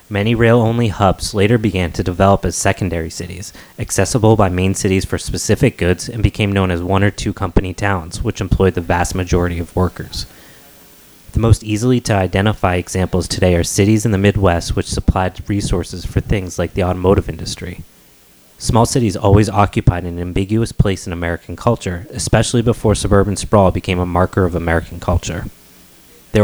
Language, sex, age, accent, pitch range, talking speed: English, male, 30-49, American, 90-110 Hz, 170 wpm